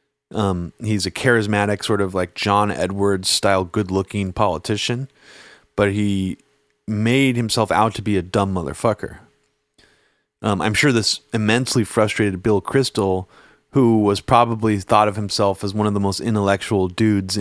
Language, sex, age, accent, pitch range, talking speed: English, male, 30-49, American, 100-125 Hz, 150 wpm